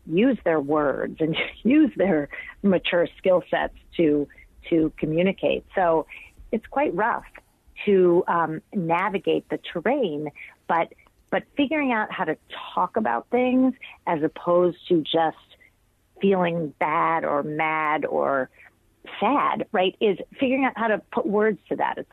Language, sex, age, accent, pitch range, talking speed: English, female, 40-59, American, 160-205 Hz, 140 wpm